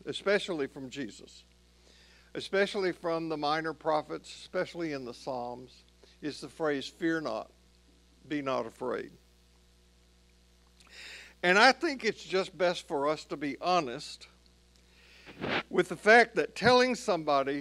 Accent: American